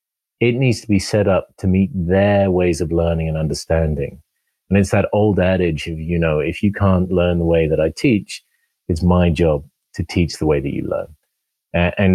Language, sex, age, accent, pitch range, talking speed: English, male, 30-49, British, 85-100 Hz, 205 wpm